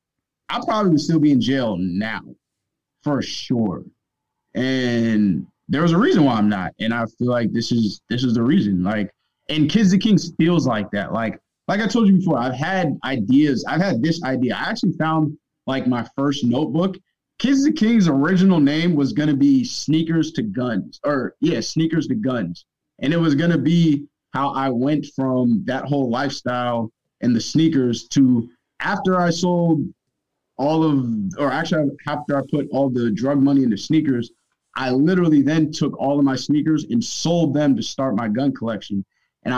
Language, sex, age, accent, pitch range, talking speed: English, male, 20-39, American, 125-160 Hz, 185 wpm